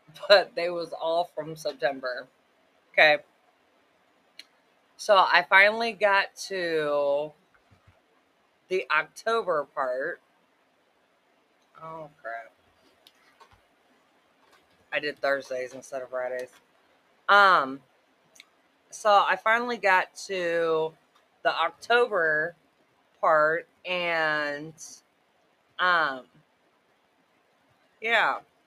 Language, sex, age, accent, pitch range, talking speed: English, female, 30-49, American, 150-200 Hz, 75 wpm